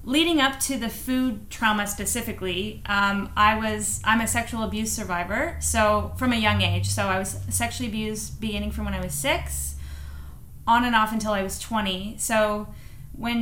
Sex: female